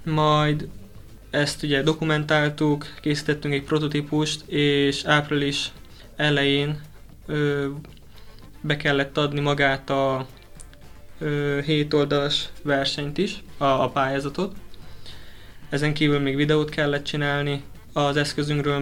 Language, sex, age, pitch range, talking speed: Hungarian, male, 20-39, 135-150 Hz, 95 wpm